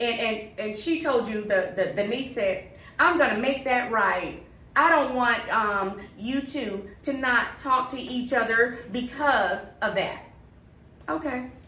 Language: English